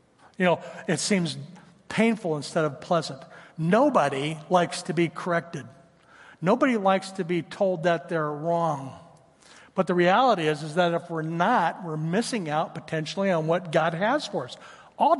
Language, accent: English, American